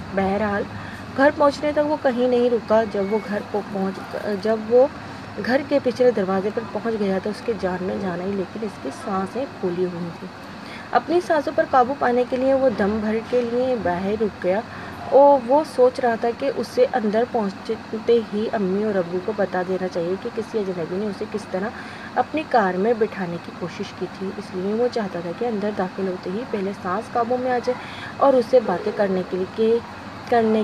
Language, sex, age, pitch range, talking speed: Urdu, female, 20-39, 195-240 Hz, 200 wpm